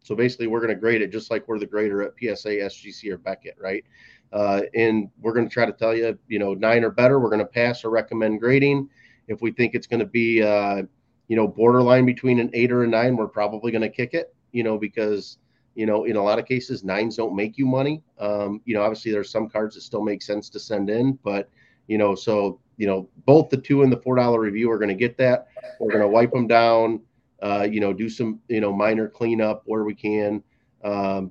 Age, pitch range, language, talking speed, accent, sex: 30-49, 105-120 Hz, English, 245 wpm, American, male